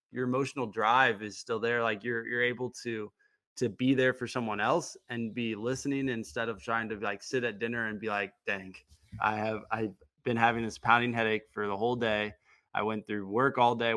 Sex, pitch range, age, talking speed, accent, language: male, 115-140 Hz, 20-39, 215 wpm, American, English